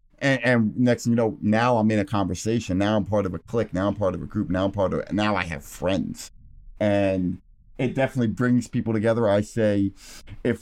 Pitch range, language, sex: 100-125 Hz, English, male